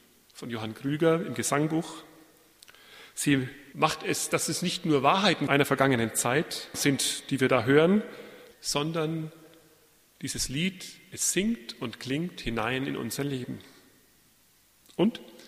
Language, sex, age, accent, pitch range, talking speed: German, male, 40-59, German, 130-165 Hz, 130 wpm